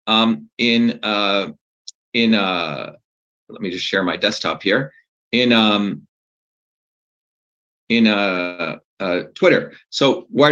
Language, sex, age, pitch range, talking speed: English, male, 40-59, 110-145 Hz, 115 wpm